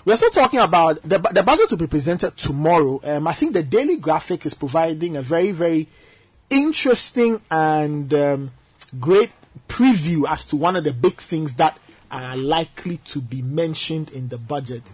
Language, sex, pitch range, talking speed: English, male, 135-175 Hz, 175 wpm